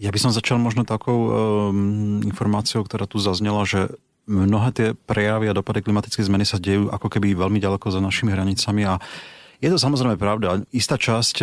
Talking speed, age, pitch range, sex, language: 185 wpm, 40-59, 90-110 Hz, male, Slovak